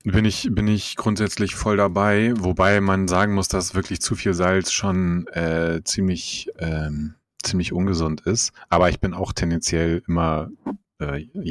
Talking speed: 155 wpm